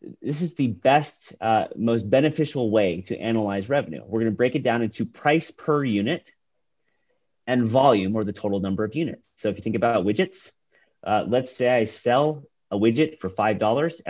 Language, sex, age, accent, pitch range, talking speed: English, male, 30-49, American, 100-125 Hz, 185 wpm